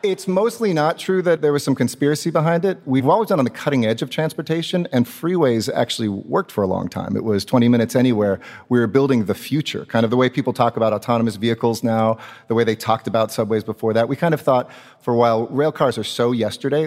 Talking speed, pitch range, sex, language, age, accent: 240 wpm, 110-135 Hz, male, English, 30-49, American